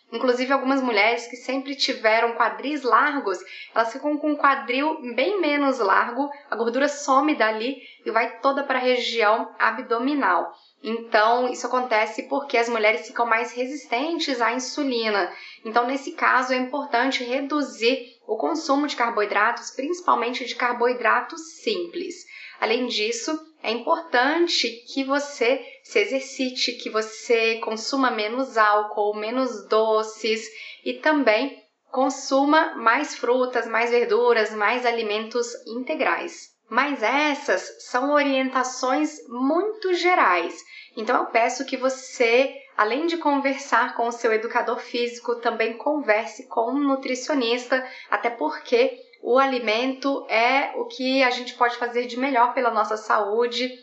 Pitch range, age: 230-280 Hz, 10-29